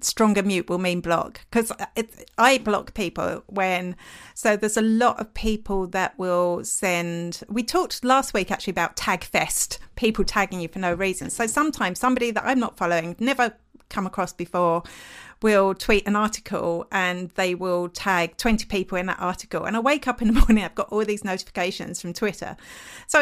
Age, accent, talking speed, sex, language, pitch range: 40-59, British, 185 wpm, female, English, 185-245 Hz